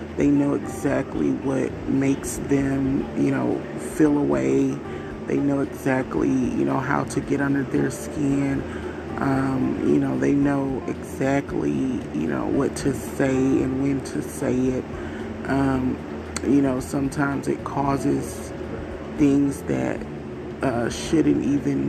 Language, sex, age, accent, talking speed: English, male, 30-49, American, 130 wpm